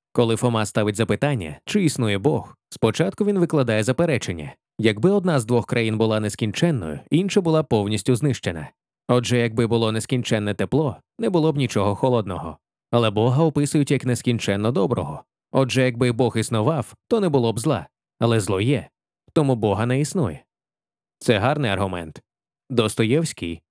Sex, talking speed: male, 145 wpm